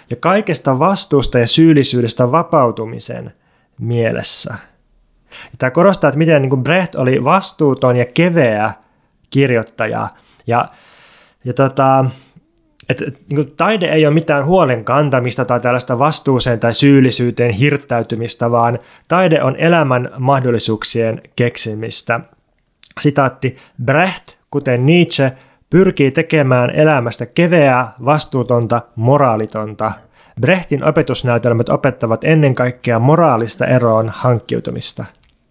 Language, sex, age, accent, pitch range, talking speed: Finnish, male, 20-39, native, 120-150 Hz, 95 wpm